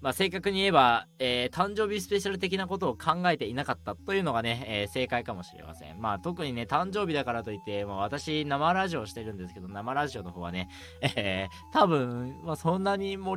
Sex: male